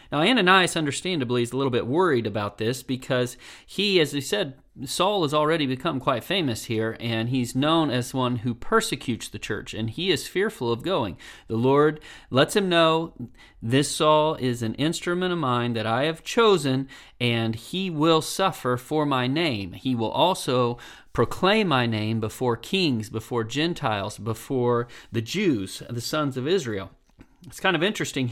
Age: 40-59